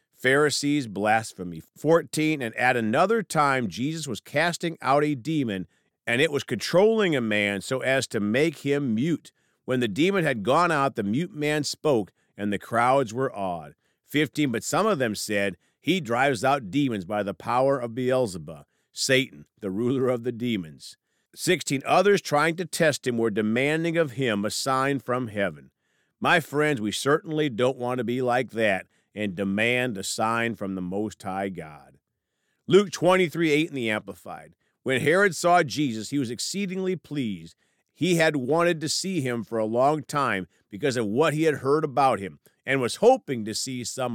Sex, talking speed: male, 180 wpm